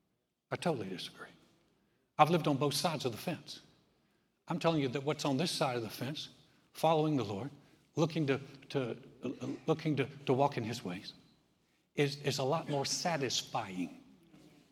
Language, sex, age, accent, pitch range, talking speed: English, male, 60-79, American, 120-150 Hz, 170 wpm